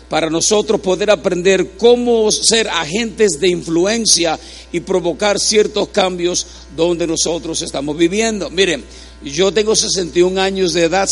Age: 50-69